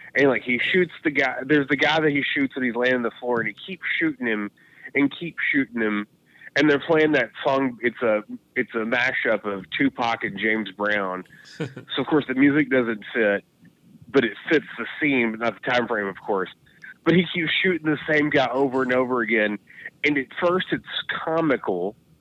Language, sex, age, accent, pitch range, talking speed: English, male, 30-49, American, 110-145 Hz, 210 wpm